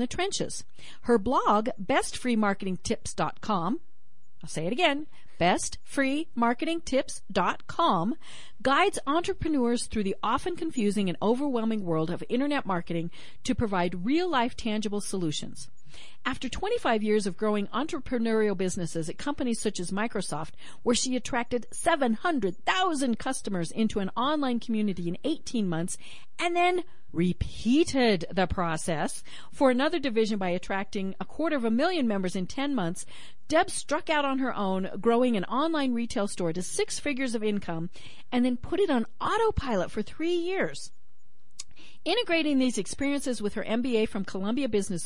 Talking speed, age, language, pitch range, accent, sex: 140 wpm, 50-69, English, 195-280 Hz, American, female